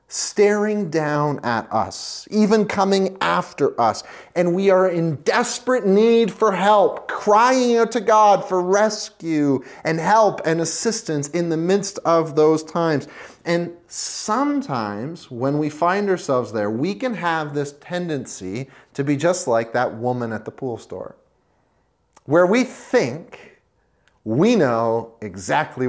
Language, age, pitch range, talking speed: English, 30-49, 130-195 Hz, 140 wpm